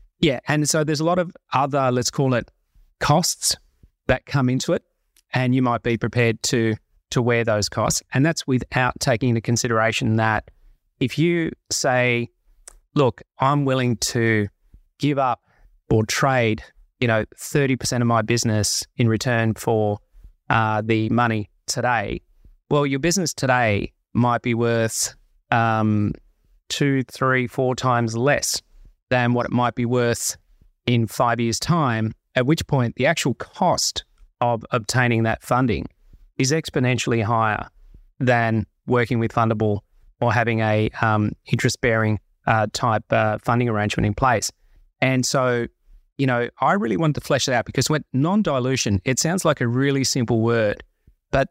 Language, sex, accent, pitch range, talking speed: English, male, Australian, 110-130 Hz, 155 wpm